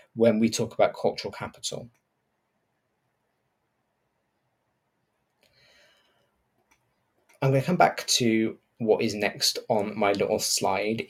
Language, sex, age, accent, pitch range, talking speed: English, male, 20-39, British, 110-135 Hz, 105 wpm